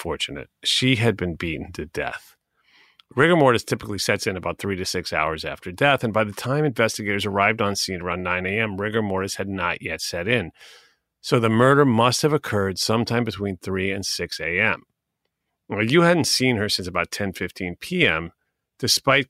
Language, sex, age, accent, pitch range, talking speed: English, male, 40-59, American, 95-130 Hz, 185 wpm